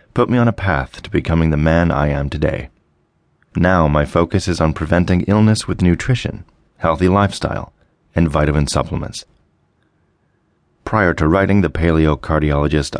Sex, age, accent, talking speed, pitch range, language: male, 40-59, American, 150 wpm, 75-95 Hz, English